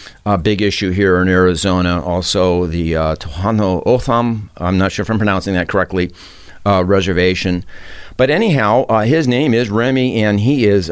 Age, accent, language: 50-69, American, English